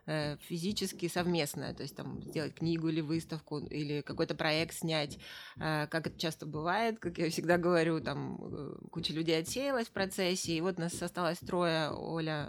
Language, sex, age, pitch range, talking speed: Russian, female, 20-39, 155-185 Hz, 160 wpm